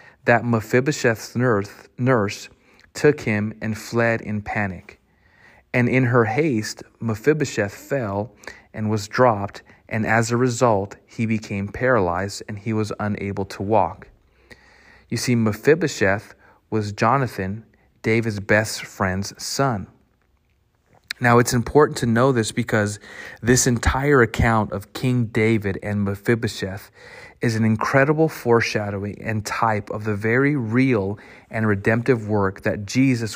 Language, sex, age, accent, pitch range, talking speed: English, male, 30-49, American, 105-120 Hz, 125 wpm